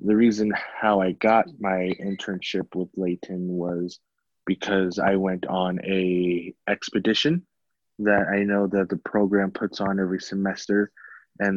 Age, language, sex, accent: 20-39, English, male, American